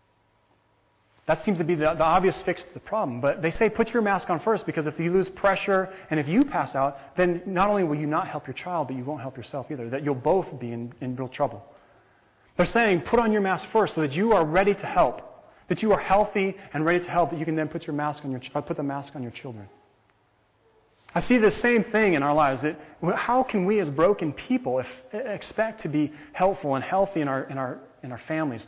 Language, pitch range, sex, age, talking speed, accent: English, 135-185 Hz, male, 30-49, 250 wpm, American